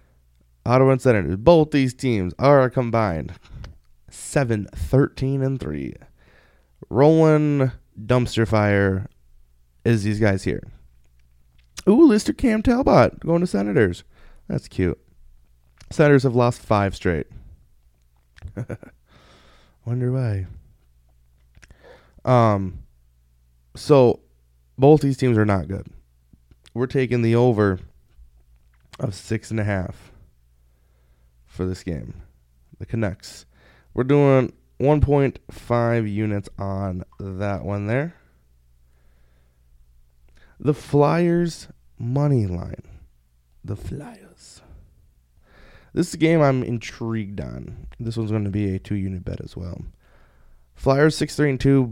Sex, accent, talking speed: male, American, 100 wpm